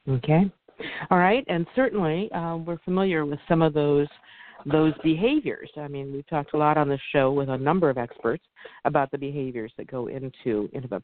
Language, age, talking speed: English, 50-69, 190 wpm